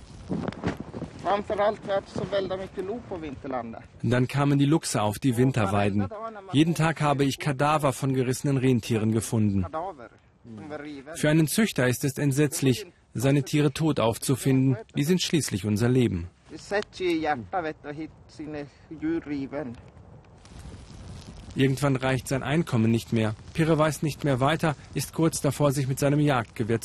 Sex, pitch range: male, 120-155 Hz